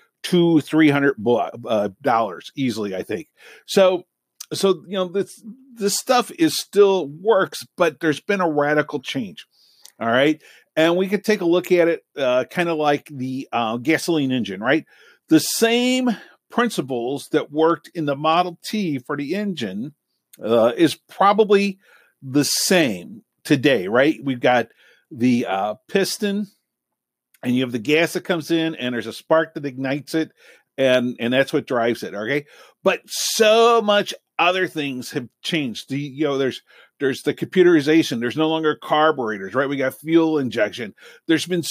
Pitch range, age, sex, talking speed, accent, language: 135-185 Hz, 50-69, male, 165 wpm, American, English